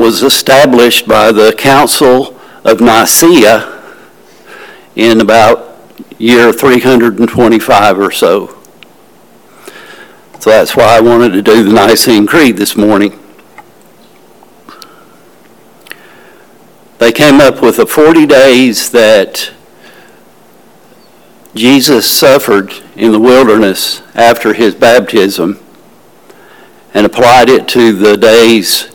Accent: American